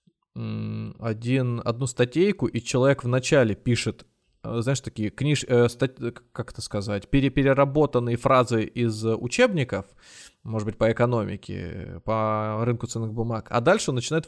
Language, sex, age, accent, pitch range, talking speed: Russian, male, 20-39, native, 110-135 Hz, 130 wpm